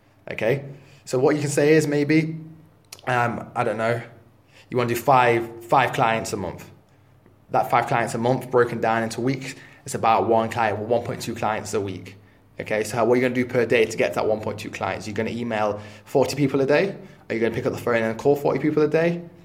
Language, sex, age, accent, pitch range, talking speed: English, male, 20-39, British, 110-140 Hz, 230 wpm